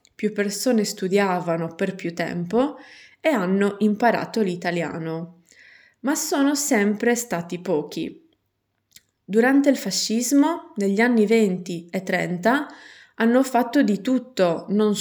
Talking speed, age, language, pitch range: 110 wpm, 20-39, Italian, 180-240 Hz